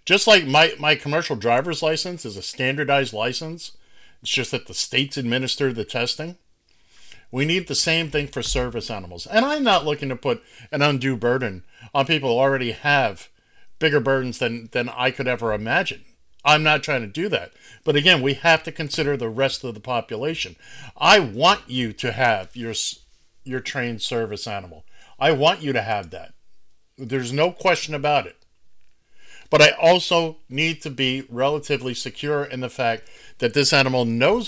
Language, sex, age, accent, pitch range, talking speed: English, male, 50-69, American, 125-165 Hz, 180 wpm